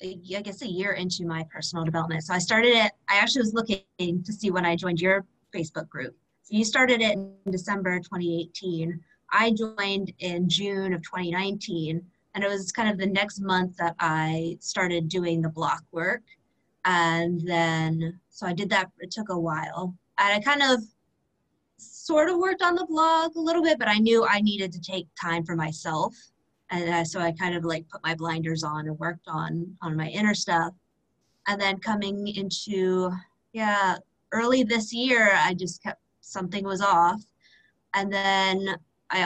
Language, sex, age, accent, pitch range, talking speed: English, female, 20-39, American, 170-210 Hz, 180 wpm